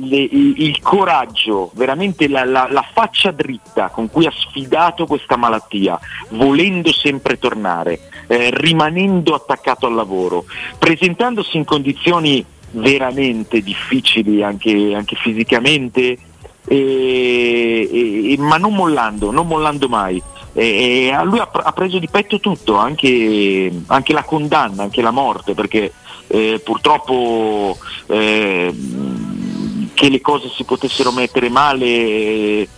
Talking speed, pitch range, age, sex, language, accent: 125 wpm, 110-155 Hz, 40-59, male, Italian, native